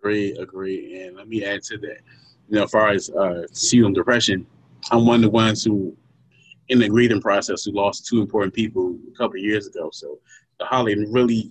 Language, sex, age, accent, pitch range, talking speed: English, male, 20-39, American, 110-140 Hz, 210 wpm